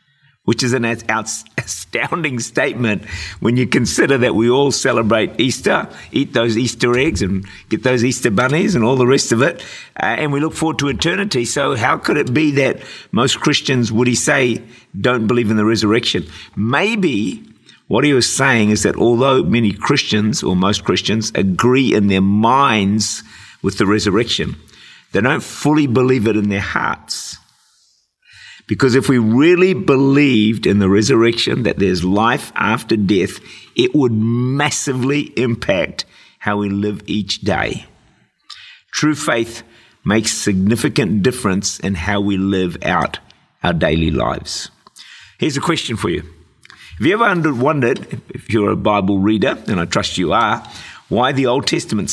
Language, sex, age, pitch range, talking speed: English, male, 50-69, 105-135 Hz, 160 wpm